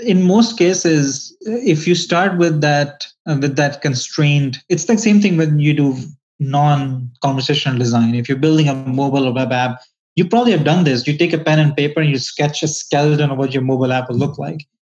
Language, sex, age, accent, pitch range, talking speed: English, male, 20-39, Indian, 135-165 Hz, 215 wpm